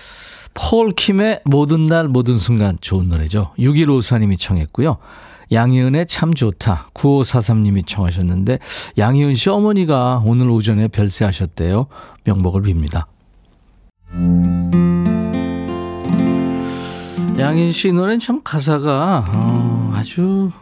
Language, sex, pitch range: Korean, male, 90-155 Hz